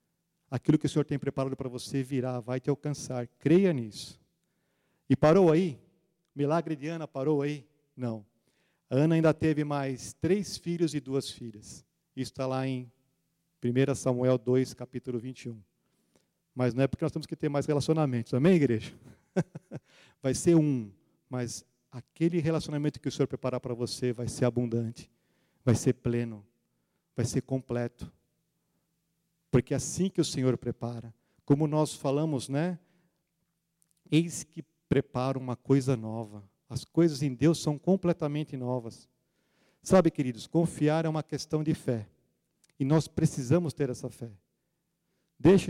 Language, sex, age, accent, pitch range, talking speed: Portuguese, male, 40-59, Brazilian, 125-165 Hz, 145 wpm